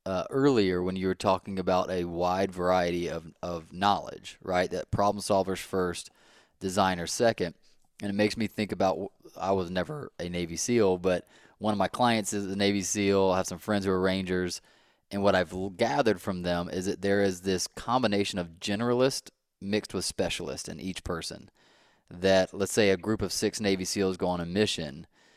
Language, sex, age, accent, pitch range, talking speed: English, male, 30-49, American, 95-110 Hz, 190 wpm